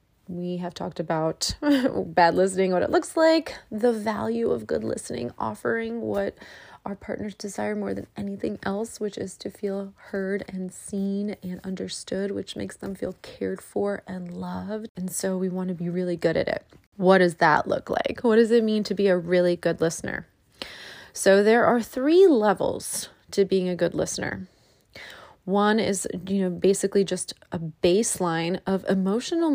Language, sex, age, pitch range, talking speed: English, female, 30-49, 180-220 Hz, 175 wpm